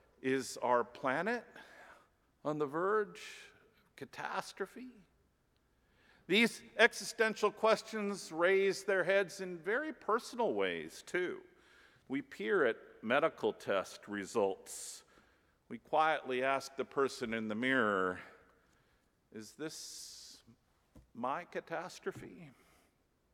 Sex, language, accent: male, English, American